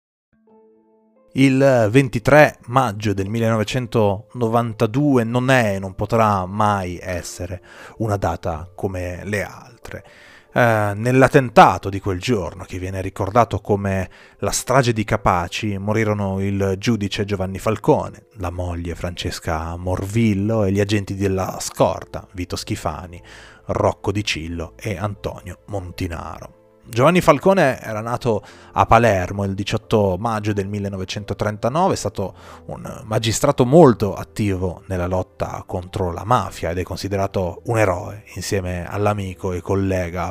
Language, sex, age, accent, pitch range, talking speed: Italian, male, 30-49, native, 90-110 Hz, 125 wpm